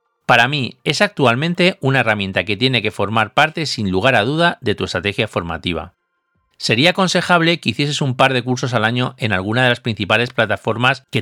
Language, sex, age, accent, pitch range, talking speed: Spanish, male, 40-59, Spanish, 105-140 Hz, 195 wpm